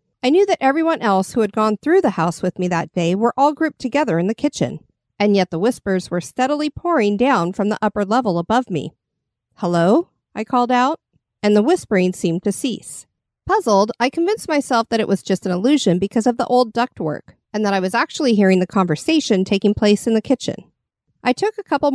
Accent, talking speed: American, 215 wpm